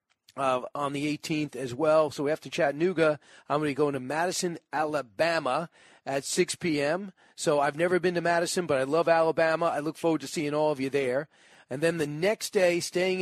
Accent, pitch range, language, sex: American, 145-170 Hz, English, male